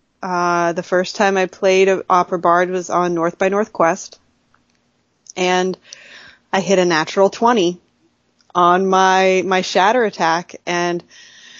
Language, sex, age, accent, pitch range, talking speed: English, female, 20-39, American, 175-215 Hz, 135 wpm